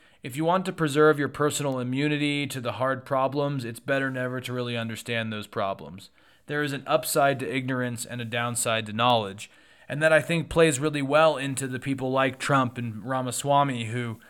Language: English